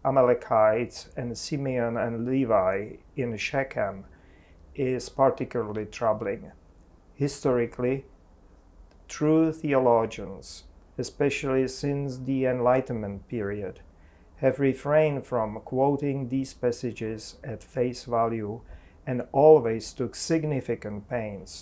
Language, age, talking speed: English, 40-59, 90 wpm